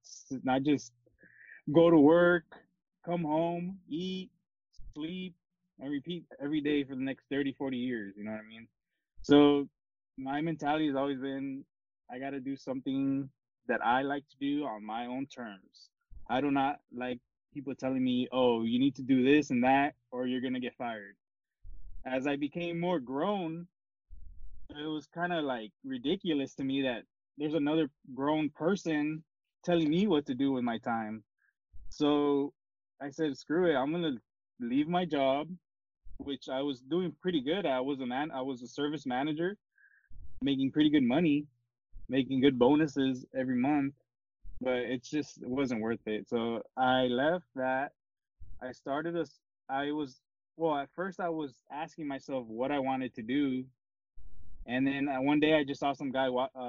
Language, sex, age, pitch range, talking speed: English, male, 20-39, 130-155 Hz, 175 wpm